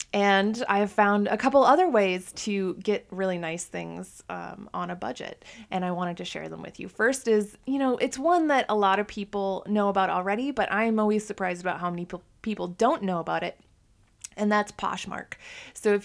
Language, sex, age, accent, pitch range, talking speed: English, female, 20-39, American, 175-215 Hz, 210 wpm